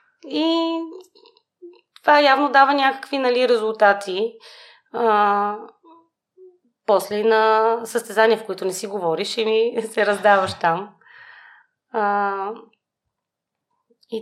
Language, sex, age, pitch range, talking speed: Bulgarian, female, 20-39, 190-245 Hz, 95 wpm